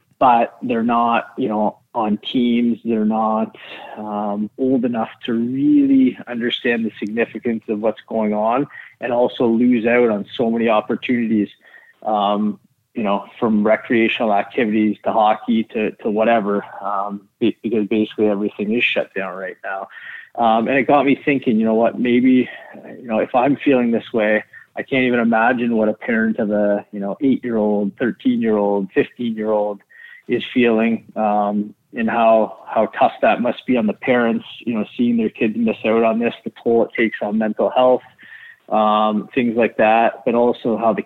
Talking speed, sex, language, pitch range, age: 170 wpm, male, English, 105-120 Hz, 20-39